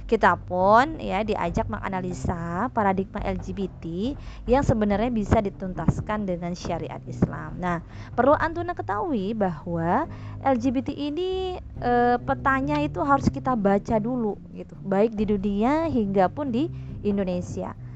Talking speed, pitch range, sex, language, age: 120 wpm, 180-245 Hz, female, Indonesian, 20-39